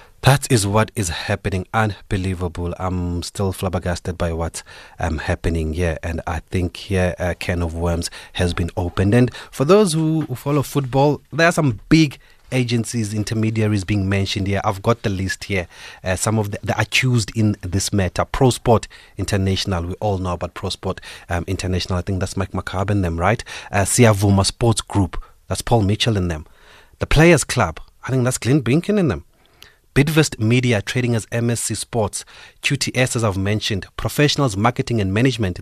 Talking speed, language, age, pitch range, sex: 180 wpm, English, 30-49, 95-120 Hz, male